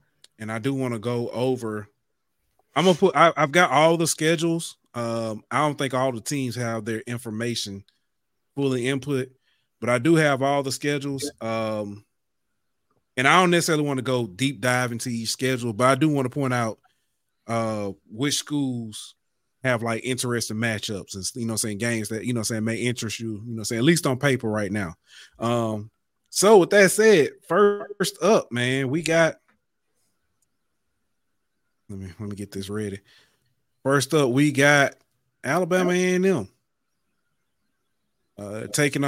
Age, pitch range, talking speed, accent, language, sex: 30-49, 115-150 Hz, 170 wpm, American, English, male